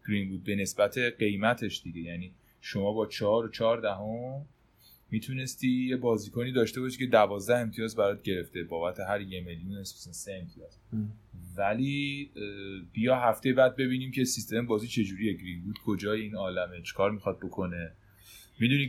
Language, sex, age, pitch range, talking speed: Persian, male, 30-49, 100-130 Hz, 145 wpm